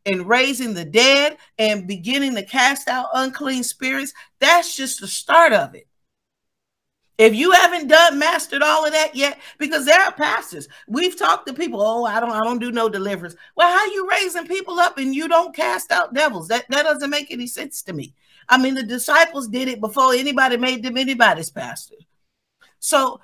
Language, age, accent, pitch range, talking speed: English, 50-69, American, 220-300 Hz, 195 wpm